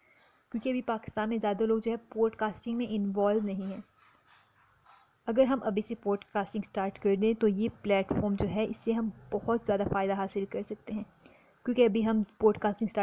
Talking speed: 195 wpm